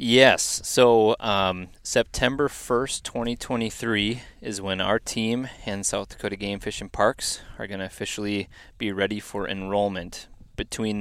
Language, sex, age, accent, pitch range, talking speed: English, male, 20-39, American, 95-115 Hz, 140 wpm